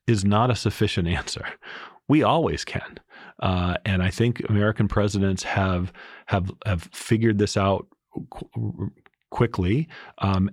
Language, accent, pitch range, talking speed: English, American, 95-110 Hz, 125 wpm